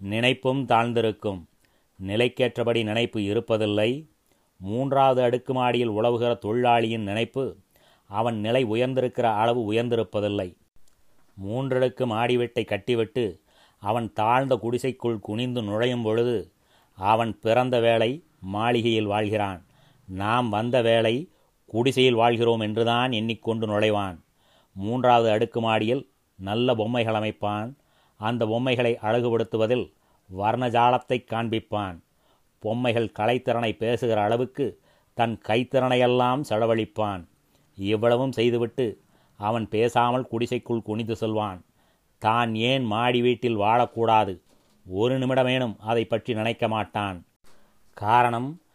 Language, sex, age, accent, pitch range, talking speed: Tamil, male, 30-49, native, 110-125 Hz, 90 wpm